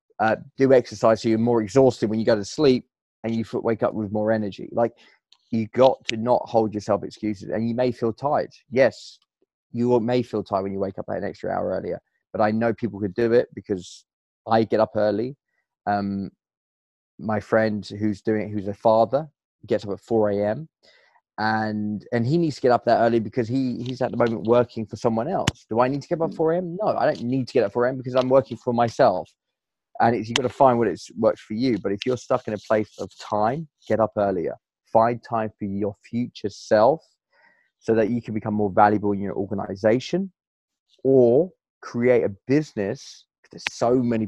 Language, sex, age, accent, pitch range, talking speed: English, male, 20-39, British, 105-125 Hz, 215 wpm